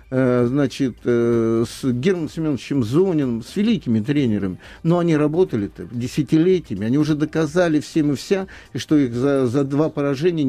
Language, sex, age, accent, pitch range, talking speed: Russian, male, 50-69, native, 130-170 Hz, 135 wpm